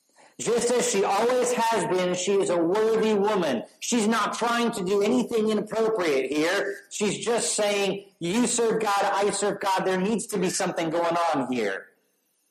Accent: American